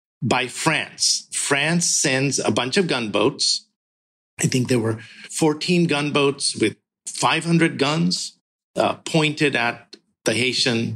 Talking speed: 120 wpm